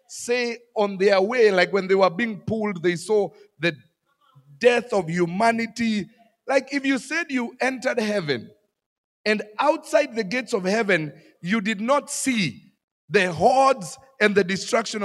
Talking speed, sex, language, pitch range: 150 wpm, male, English, 140-220 Hz